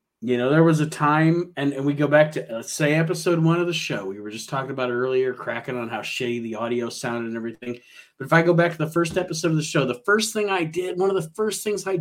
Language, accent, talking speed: English, American, 290 wpm